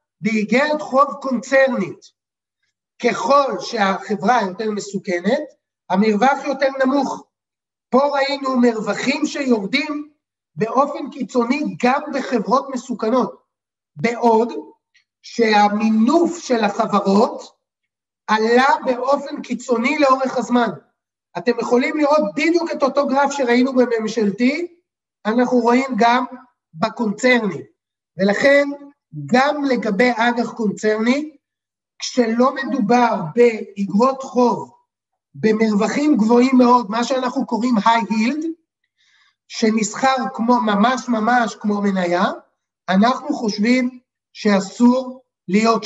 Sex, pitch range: male, 220-270 Hz